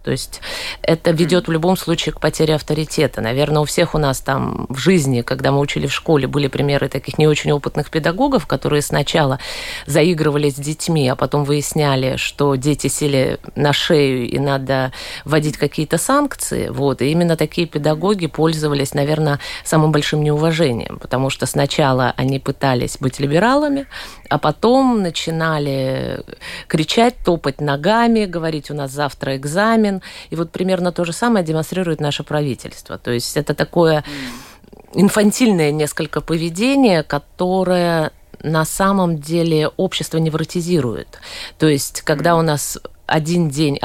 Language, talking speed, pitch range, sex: Russian, 140 wpm, 140-170 Hz, female